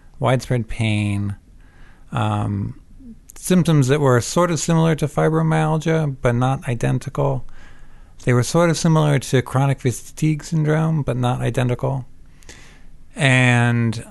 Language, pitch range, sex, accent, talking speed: English, 110-140 Hz, male, American, 115 wpm